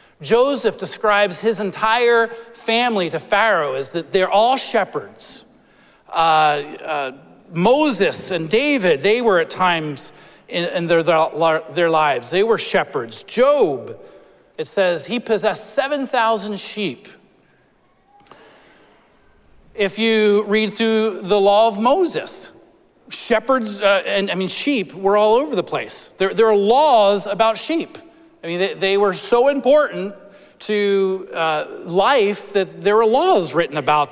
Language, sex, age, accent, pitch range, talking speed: English, male, 40-59, American, 180-225 Hz, 135 wpm